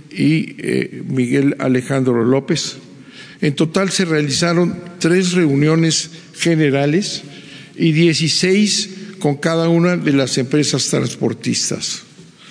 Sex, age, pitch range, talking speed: male, 50-69, 140-175 Hz, 100 wpm